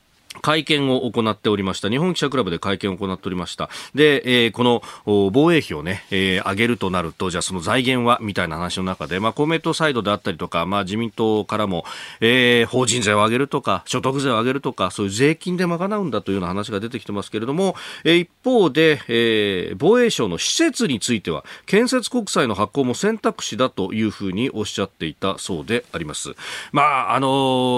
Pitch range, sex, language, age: 100-160 Hz, male, Japanese, 40-59